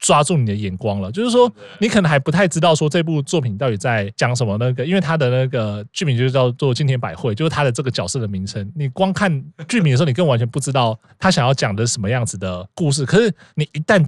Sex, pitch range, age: male, 120-165 Hz, 20-39